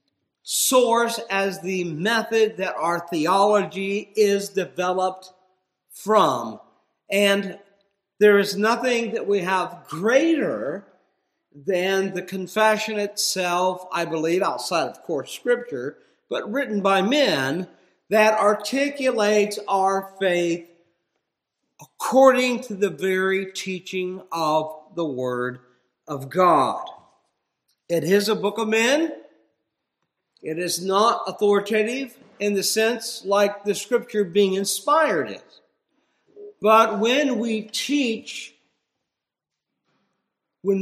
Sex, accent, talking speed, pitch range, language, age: male, American, 105 wpm, 185-235 Hz, English, 50-69